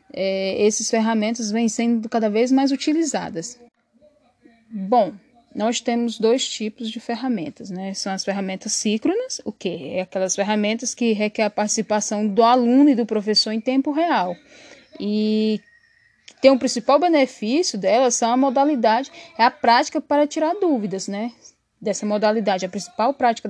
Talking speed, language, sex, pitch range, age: 150 wpm, Portuguese, female, 215-260 Hz, 10-29